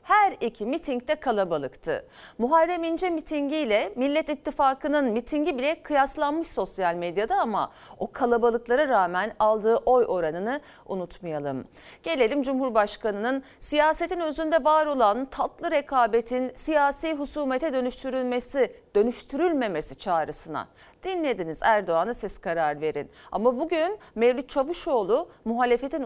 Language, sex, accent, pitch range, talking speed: Turkish, female, native, 220-310 Hz, 105 wpm